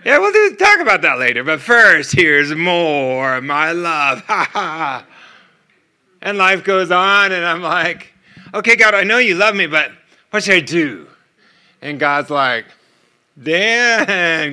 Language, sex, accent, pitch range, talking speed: English, male, American, 185-225 Hz, 155 wpm